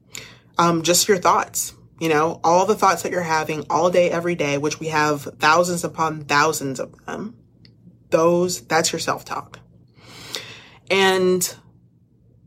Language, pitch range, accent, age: English, 155-200 Hz, American, 30-49